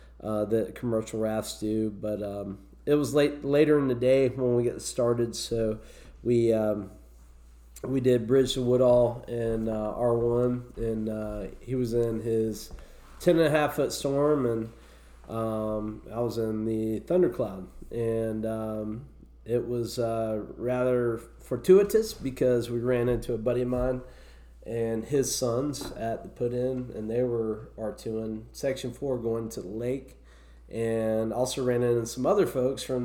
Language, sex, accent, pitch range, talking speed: English, male, American, 110-125 Hz, 155 wpm